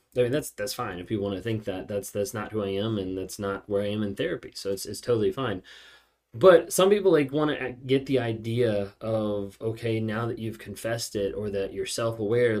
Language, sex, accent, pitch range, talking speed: English, male, American, 105-130 Hz, 240 wpm